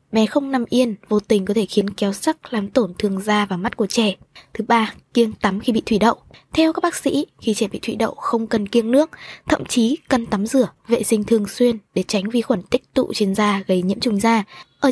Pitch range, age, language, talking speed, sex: 210-255 Hz, 20-39, Vietnamese, 250 wpm, female